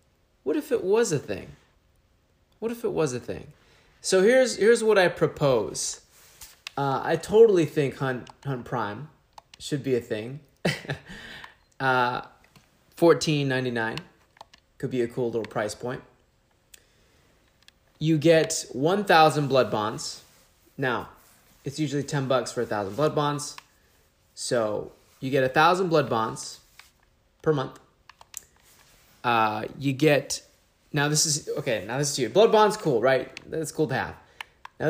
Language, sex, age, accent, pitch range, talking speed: English, male, 20-39, American, 125-155 Hz, 140 wpm